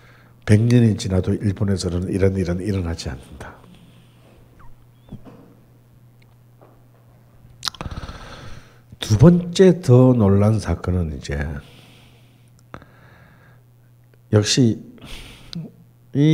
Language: Korean